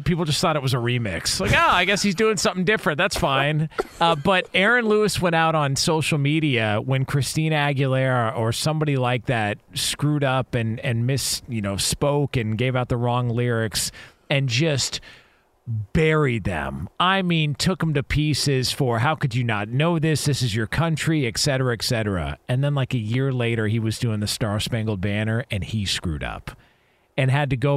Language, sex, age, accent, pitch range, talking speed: English, male, 40-59, American, 115-145 Hz, 200 wpm